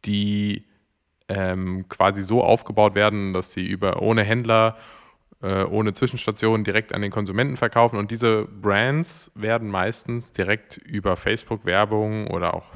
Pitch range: 95-115 Hz